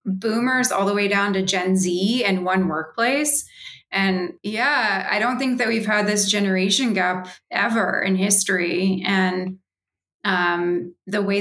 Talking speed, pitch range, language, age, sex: 155 wpm, 180-210 Hz, English, 20-39, female